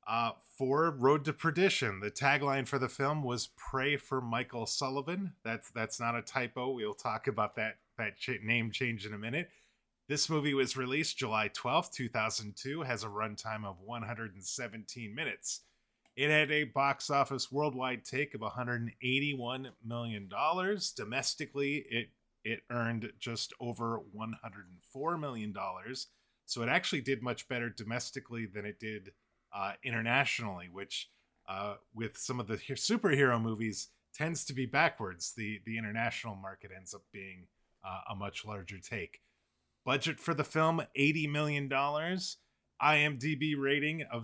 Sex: male